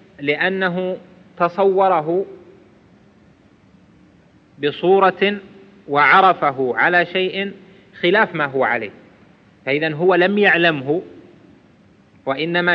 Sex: male